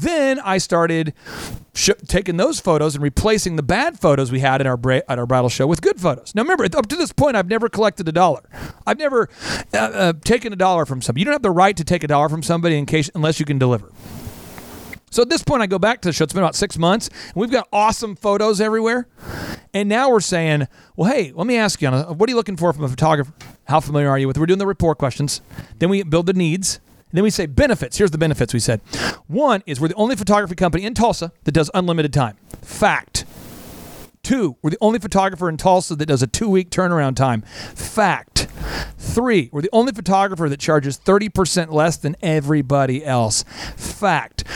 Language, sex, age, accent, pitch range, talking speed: English, male, 40-59, American, 145-205 Hz, 225 wpm